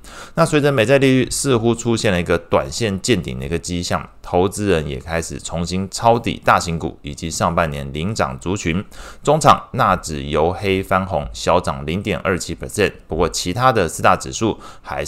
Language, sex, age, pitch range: Chinese, male, 20-39, 80-105 Hz